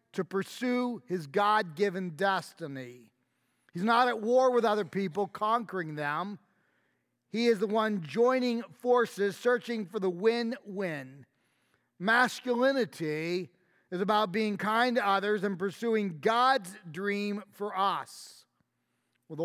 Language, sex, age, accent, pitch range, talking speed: English, male, 40-59, American, 180-225 Hz, 115 wpm